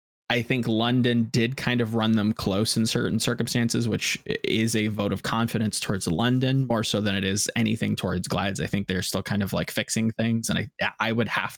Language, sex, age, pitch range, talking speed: English, male, 20-39, 100-120 Hz, 220 wpm